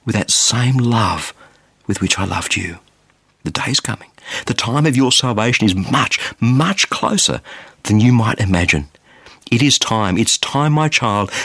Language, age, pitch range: English, 50-69, 105-145 Hz